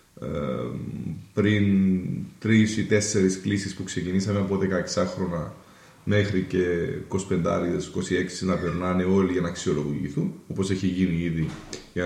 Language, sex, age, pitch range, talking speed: Greek, male, 30-49, 90-105 Hz, 120 wpm